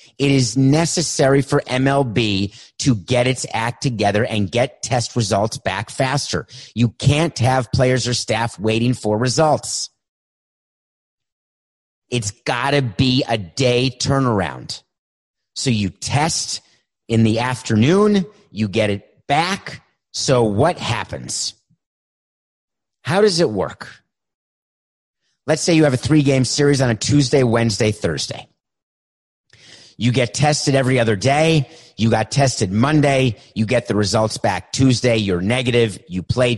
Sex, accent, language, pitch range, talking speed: male, American, English, 110-140 Hz, 135 wpm